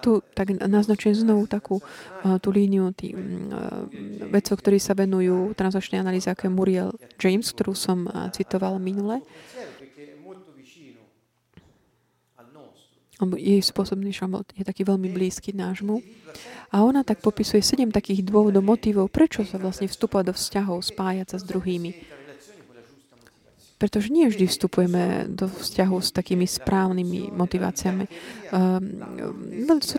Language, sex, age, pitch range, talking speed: Slovak, female, 20-39, 185-210 Hz, 115 wpm